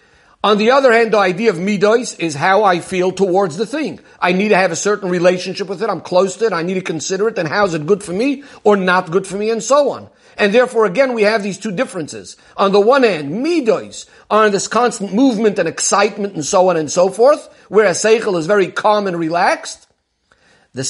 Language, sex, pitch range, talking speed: English, male, 190-240 Hz, 235 wpm